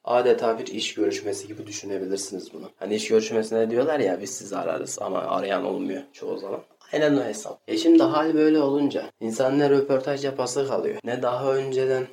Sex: male